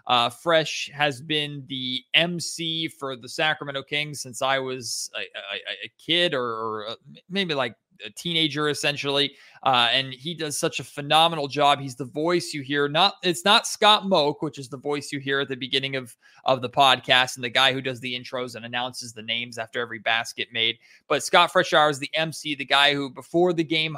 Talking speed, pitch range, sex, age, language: 205 wpm, 125-150 Hz, male, 20-39, English